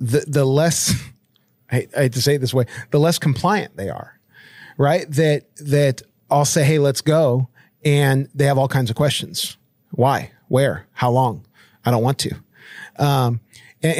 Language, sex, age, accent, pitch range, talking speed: English, male, 40-59, American, 125-150 Hz, 170 wpm